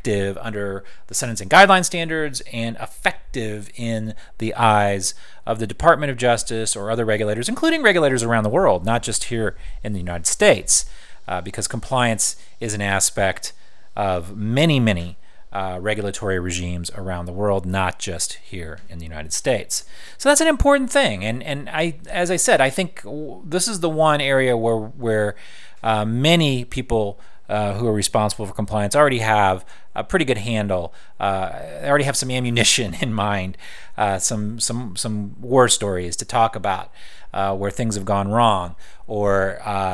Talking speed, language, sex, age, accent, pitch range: 170 wpm, English, male, 30-49, American, 100-125 Hz